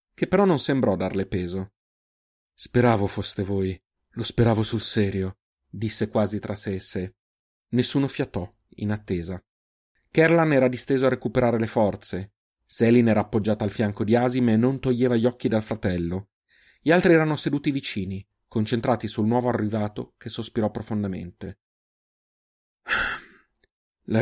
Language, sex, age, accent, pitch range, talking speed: Italian, male, 30-49, native, 95-115 Hz, 140 wpm